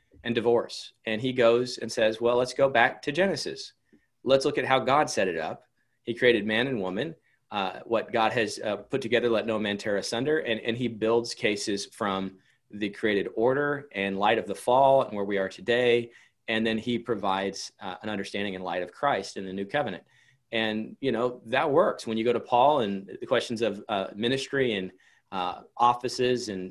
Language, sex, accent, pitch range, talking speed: English, male, American, 110-135 Hz, 205 wpm